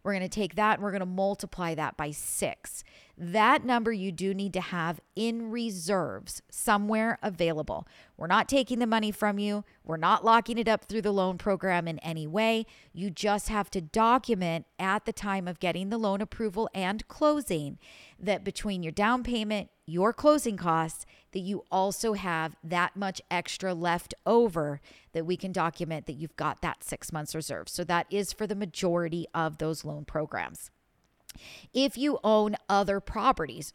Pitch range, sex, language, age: 170-210 Hz, female, English, 40-59